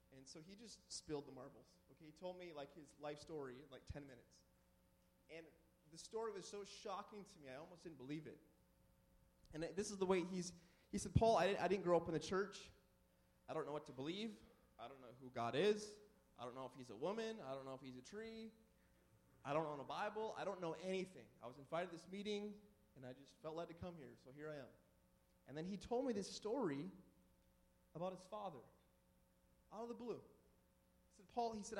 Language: English